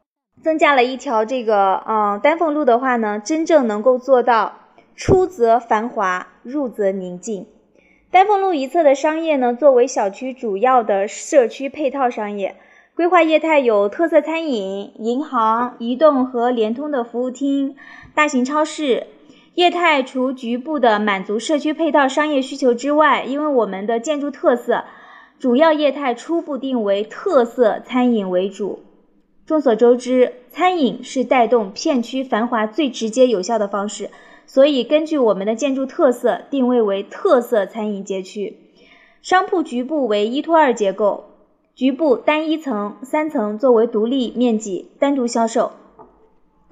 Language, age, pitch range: Chinese, 20-39, 225-300 Hz